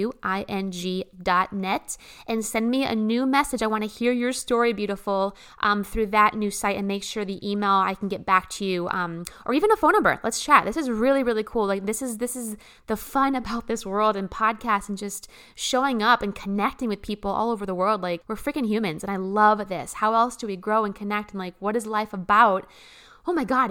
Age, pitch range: 20-39, 195-240 Hz